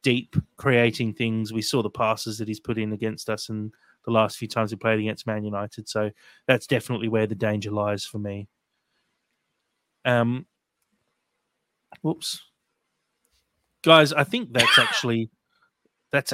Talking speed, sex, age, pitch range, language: 145 wpm, male, 30-49, 110-130 Hz, English